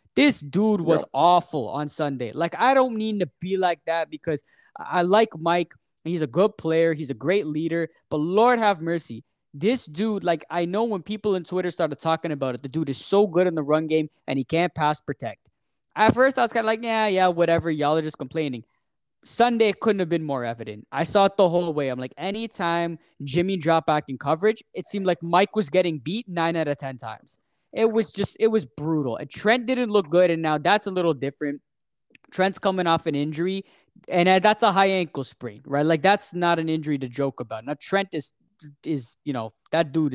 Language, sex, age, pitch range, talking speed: English, male, 20-39, 145-195 Hz, 220 wpm